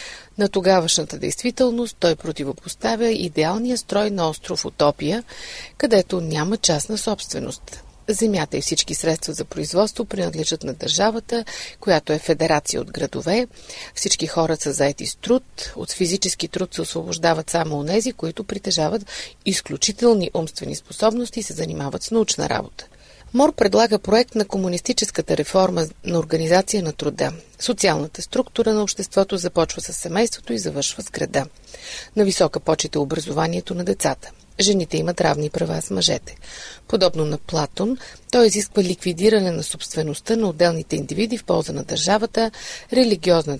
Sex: female